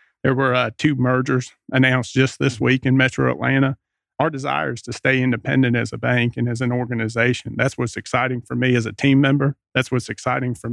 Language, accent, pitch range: English, American, 120-130 Hz